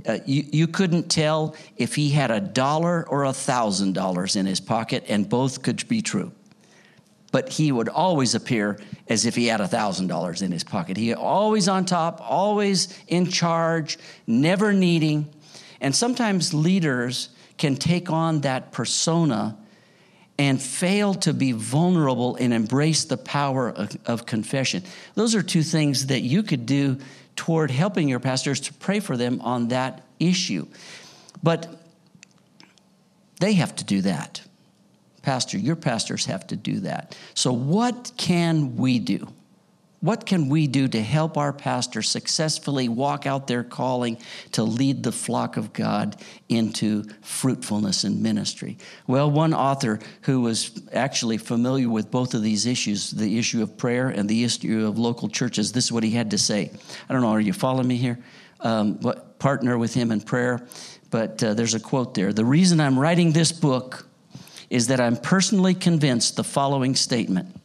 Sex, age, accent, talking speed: male, 50-69, American, 170 wpm